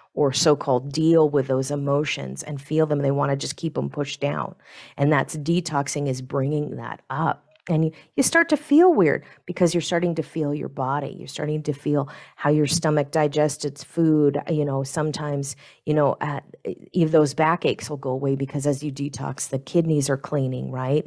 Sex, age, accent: female, 40-59, American